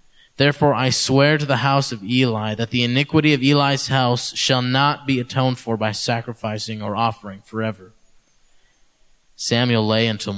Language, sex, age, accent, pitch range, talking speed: English, male, 20-39, American, 110-130 Hz, 155 wpm